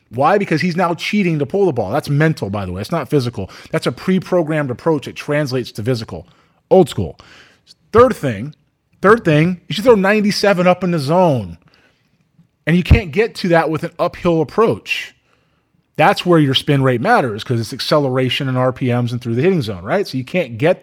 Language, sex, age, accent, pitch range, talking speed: English, male, 20-39, American, 125-170 Hz, 200 wpm